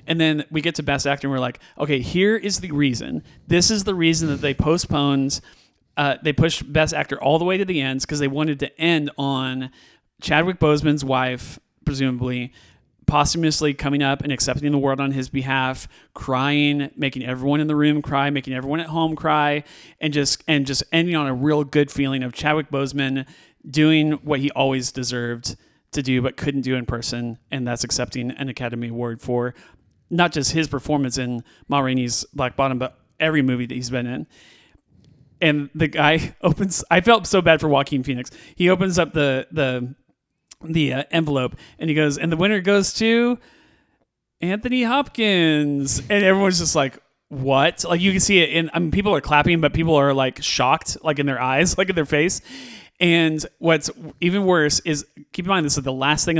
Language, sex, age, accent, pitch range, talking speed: English, male, 30-49, American, 135-165 Hz, 195 wpm